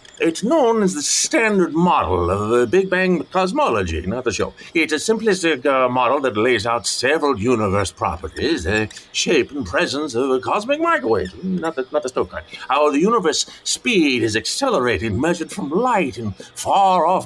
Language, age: English, 50-69